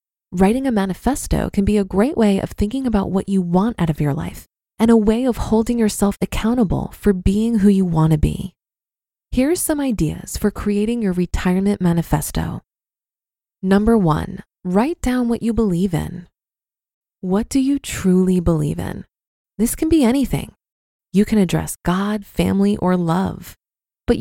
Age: 20-39